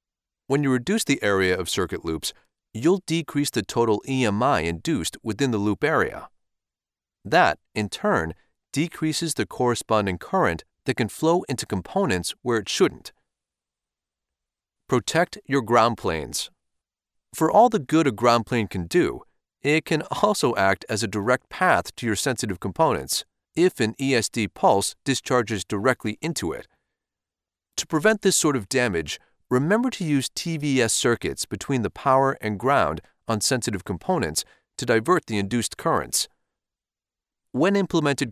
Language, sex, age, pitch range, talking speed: English, male, 40-59, 105-155 Hz, 145 wpm